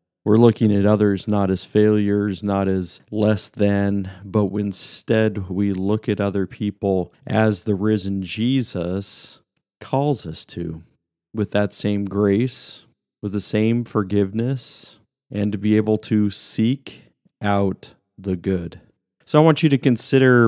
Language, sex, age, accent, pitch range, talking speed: English, male, 40-59, American, 95-110 Hz, 140 wpm